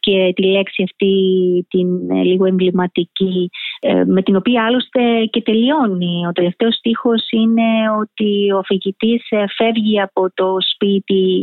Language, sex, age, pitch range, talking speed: Greek, female, 30-49, 185-220 Hz, 125 wpm